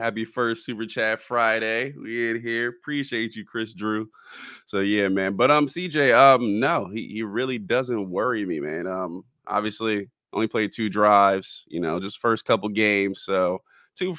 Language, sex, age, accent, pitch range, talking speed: English, male, 20-39, American, 100-130 Hz, 175 wpm